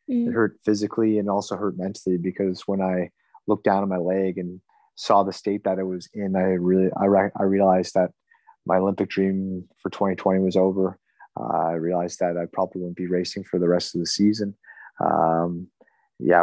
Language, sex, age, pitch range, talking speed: English, male, 30-49, 95-110 Hz, 195 wpm